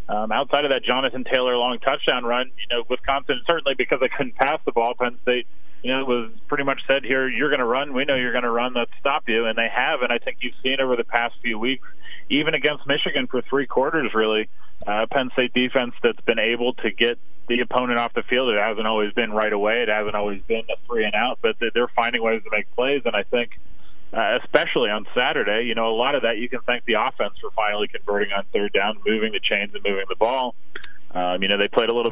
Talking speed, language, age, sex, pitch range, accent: 250 wpm, English, 30-49, male, 105-130 Hz, American